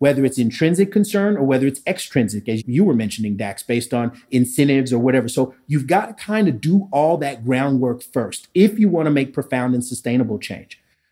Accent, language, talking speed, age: American, English, 205 wpm, 30-49